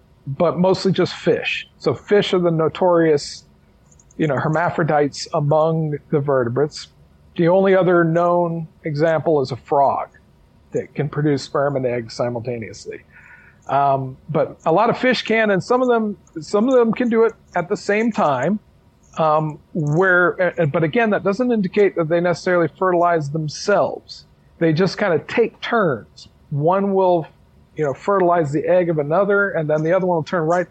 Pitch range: 145-195 Hz